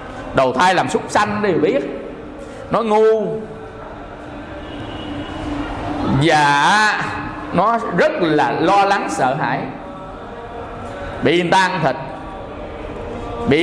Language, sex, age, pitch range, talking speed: English, male, 20-39, 165-260 Hz, 90 wpm